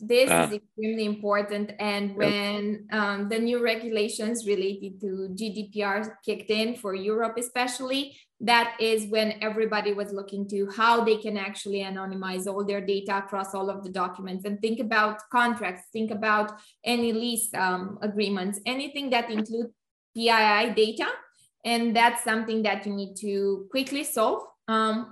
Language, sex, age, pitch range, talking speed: English, female, 20-39, 200-225 Hz, 150 wpm